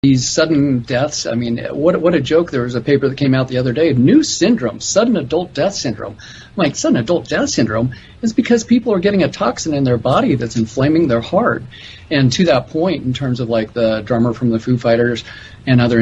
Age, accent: 40-59, American